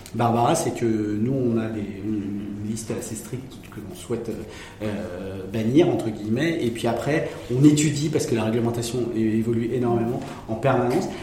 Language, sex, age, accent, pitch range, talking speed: French, male, 30-49, French, 115-145 Hz, 170 wpm